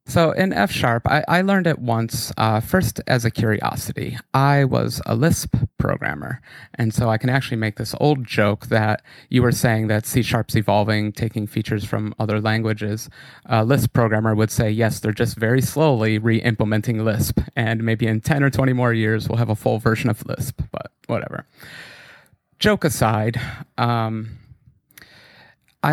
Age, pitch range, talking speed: 30-49, 110-135 Hz, 165 wpm